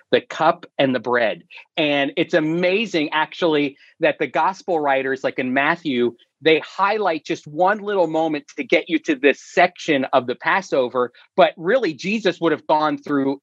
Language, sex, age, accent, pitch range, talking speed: English, male, 40-59, American, 130-170 Hz, 170 wpm